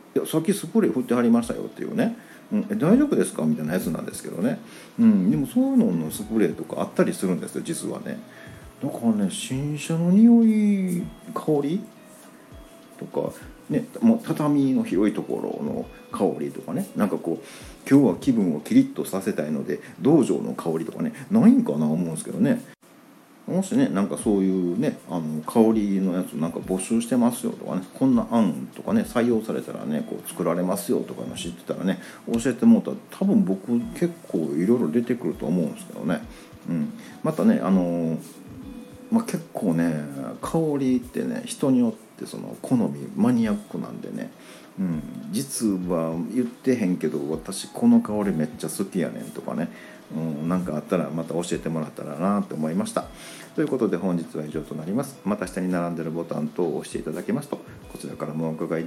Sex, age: male, 40-59